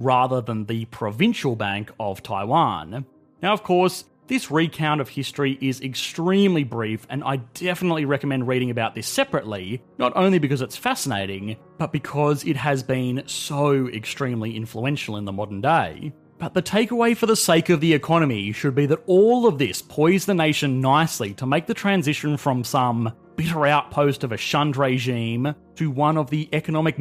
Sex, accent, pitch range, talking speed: male, Australian, 120-160 Hz, 175 wpm